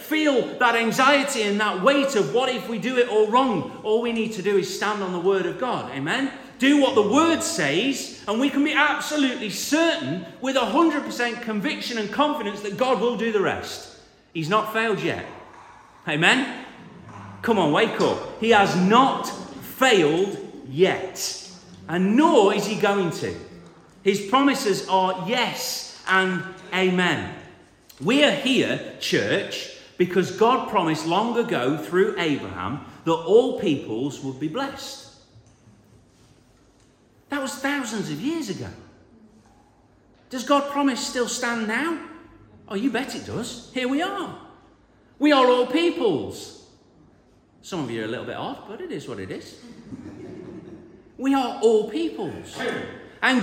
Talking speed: 150 wpm